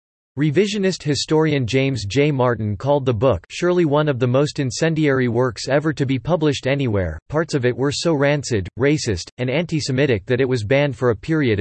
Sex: male